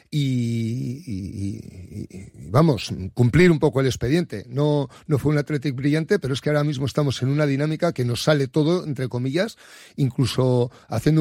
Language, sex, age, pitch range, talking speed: Spanish, male, 40-59, 125-150 Hz, 175 wpm